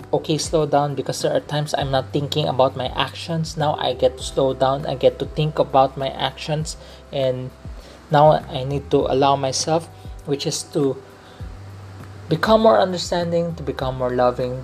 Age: 20-39